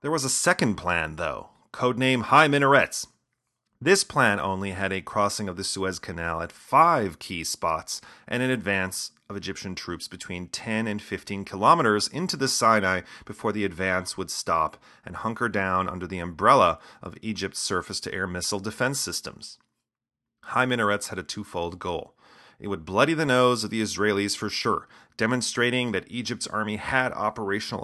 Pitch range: 95-120 Hz